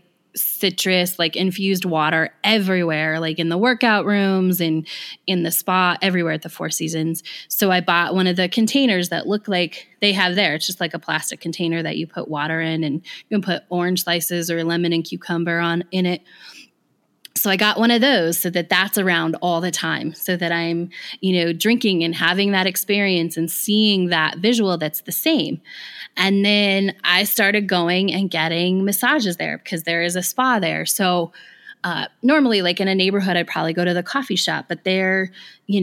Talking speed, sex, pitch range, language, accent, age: 200 wpm, female, 170-200 Hz, English, American, 20-39